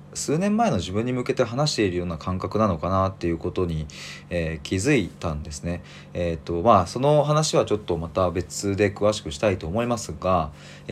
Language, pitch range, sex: Japanese, 80-105 Hz, male